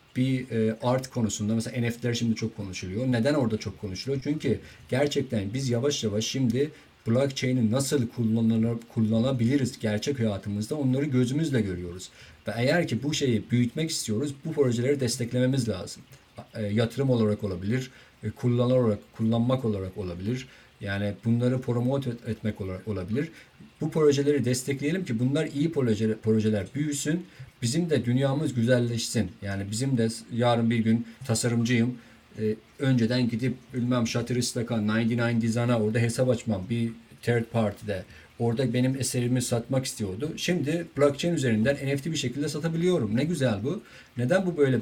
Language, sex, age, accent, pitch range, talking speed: Turkish, male, 50-69, native, 110-130 Hz, 135 wpm